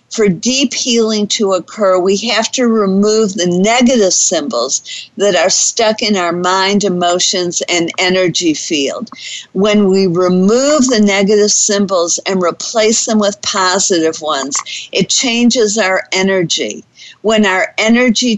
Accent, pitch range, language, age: American, 175-220 Hz, English, 50-69